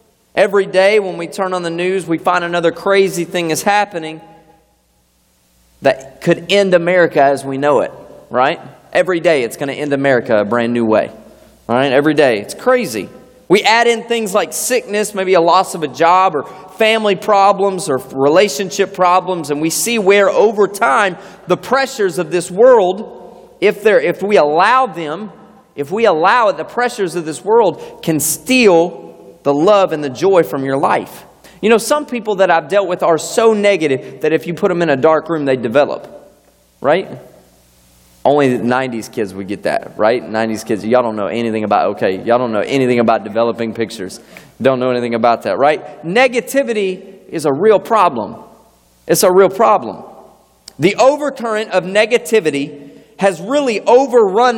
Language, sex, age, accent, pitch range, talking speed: English, male, 30-49, American, 140-205 Hz, 175 wpm